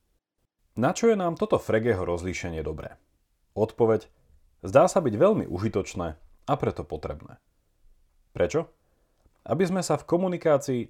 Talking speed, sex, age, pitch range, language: 125 wpm, male, 30-49, 90-130 Hz, Slovak